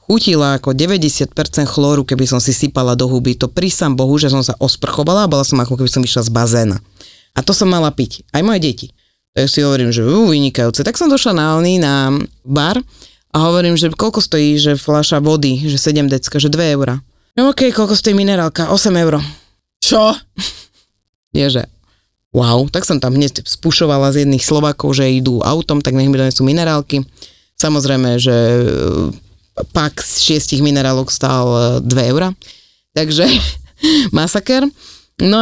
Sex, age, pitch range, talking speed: female, 30-49, 130-170 Hz, 170 wpm